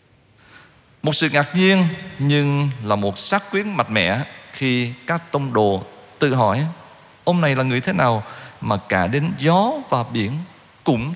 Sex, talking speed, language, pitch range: male, 160 wpm, Vietnamese, 105-145 Hz